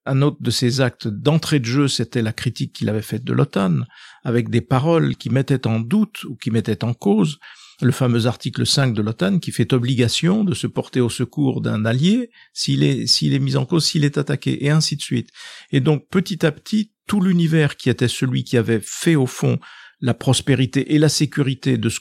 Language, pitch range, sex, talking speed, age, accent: French, 120-155 Hz, male, 215 wpm, 50-69, French